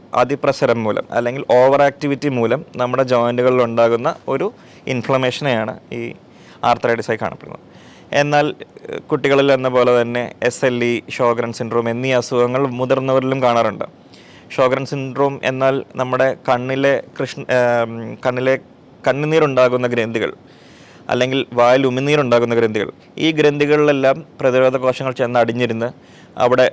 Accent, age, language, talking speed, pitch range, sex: native, 20-39, Malayalam, 100 wpm, 120-135 Hz, male